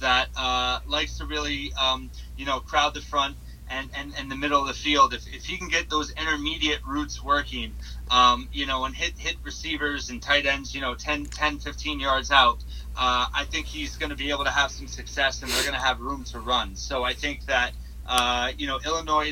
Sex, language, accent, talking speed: male, English, American, 220 wpm